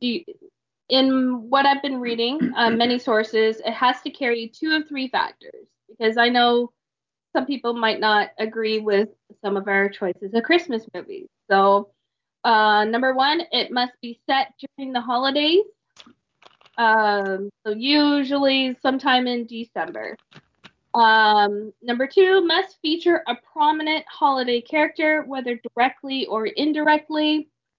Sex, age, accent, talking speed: female, 20-39, American, 135 wpm